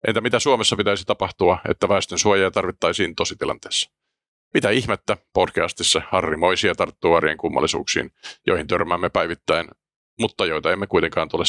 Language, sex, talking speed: Finnish, male, 135 wpm